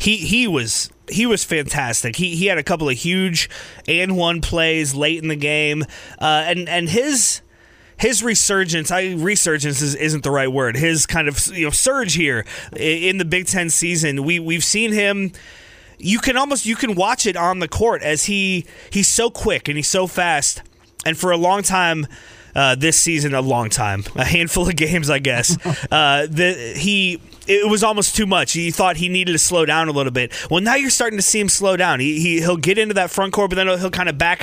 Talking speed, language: 220 wpm, English